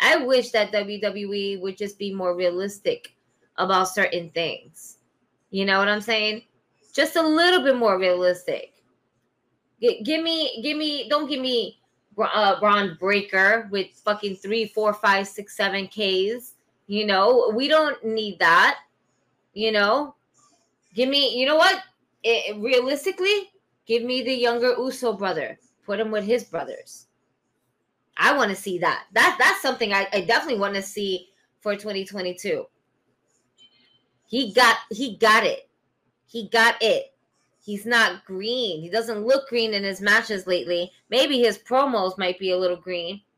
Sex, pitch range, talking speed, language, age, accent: female, 200-255 Hz, 150 wpm, English, 20-39, American